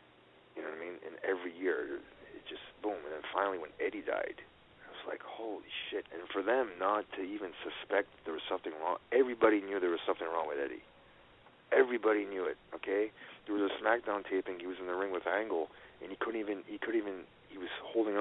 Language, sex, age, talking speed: English, male, 40-59, 220 wpm